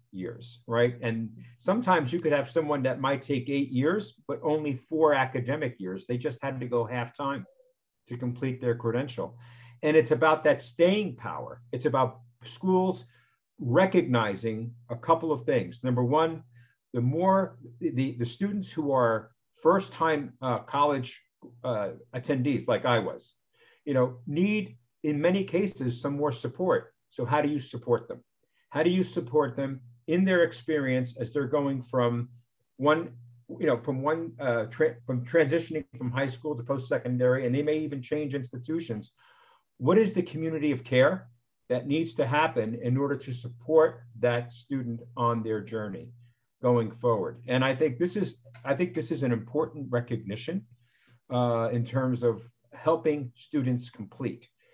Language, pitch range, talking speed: English, 120-155 Hz, 165 wpm